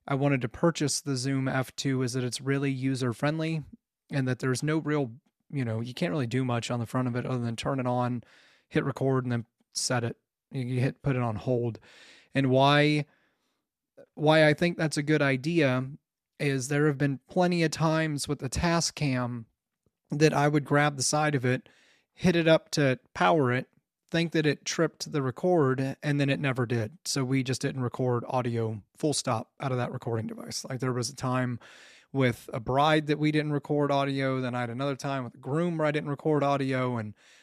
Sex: male